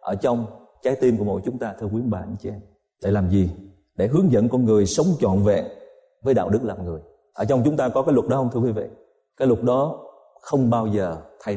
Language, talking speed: Vietnamese, 260 wpm